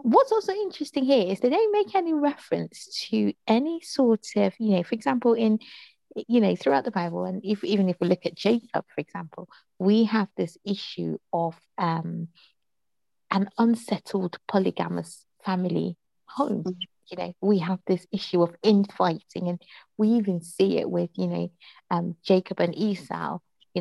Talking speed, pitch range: 165 wpm, 175-225 Hz